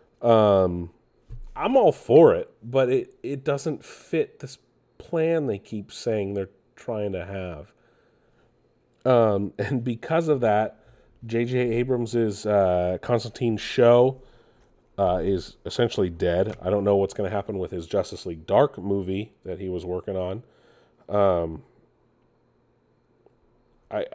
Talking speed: 130 wpm